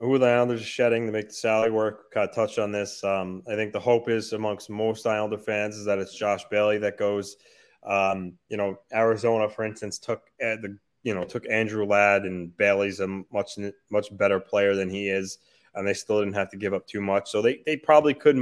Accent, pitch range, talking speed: American, 100-115 Hz, 230 wpm